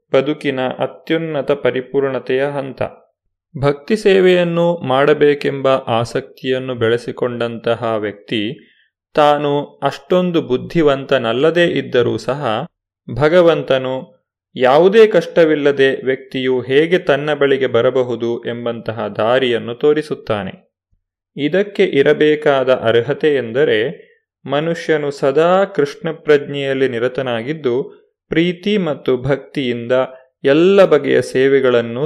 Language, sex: Kannada, male